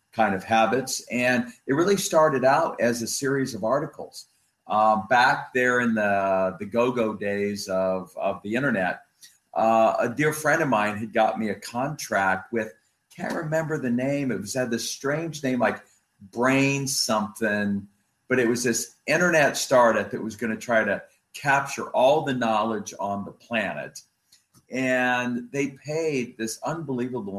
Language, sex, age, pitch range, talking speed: English, male, 40-59, 105-125 Hz, 160 wpm